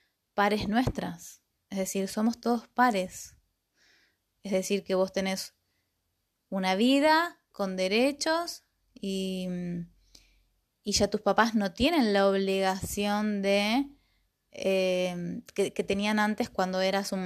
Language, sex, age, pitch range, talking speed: Spanish, female, 20-39, 185-215 Hz, 120 wpm